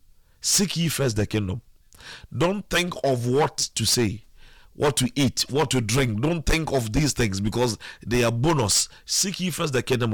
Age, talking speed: 40-59, 185 wpm